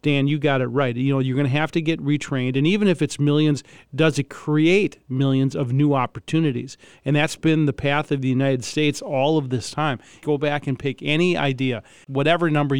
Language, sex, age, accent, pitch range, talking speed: English, male, 40-59, American, 130-155 Hz, 220 wpm